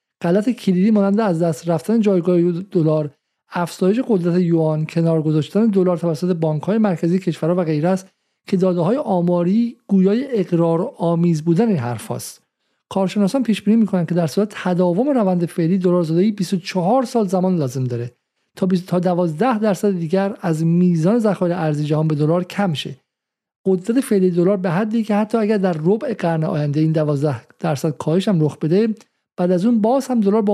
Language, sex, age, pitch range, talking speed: Persian, male, 50-69, 165-210 Hz, 165 wpm